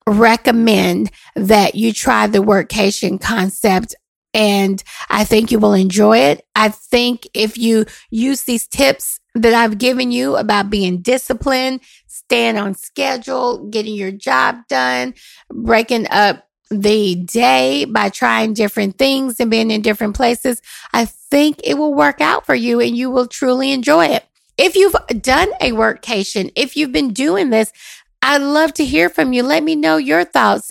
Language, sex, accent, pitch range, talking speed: English, female, American, 210-255 Hz, 160 wpm